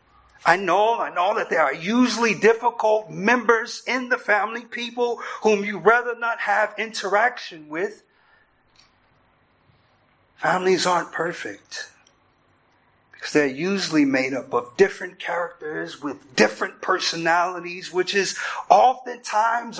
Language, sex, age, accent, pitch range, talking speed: English, male, 50-69, American, 170-240 Hz, 115 wpm